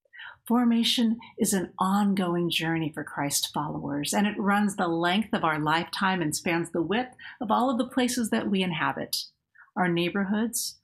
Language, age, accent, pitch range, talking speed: English, 50-69, American, 165-225 Hz, 155 wpm